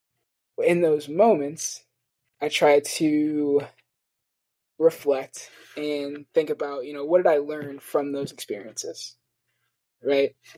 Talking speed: 115 wpm